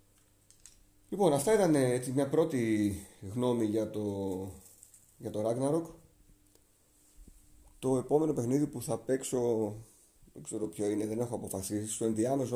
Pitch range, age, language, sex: 100-125 Hz, 30-49, Greek, male